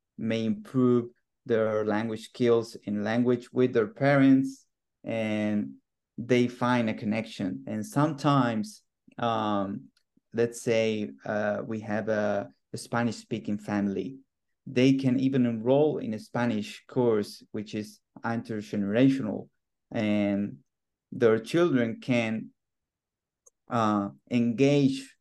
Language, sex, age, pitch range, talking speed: English, male, 30-49, 105-125 Hz, 105 wpm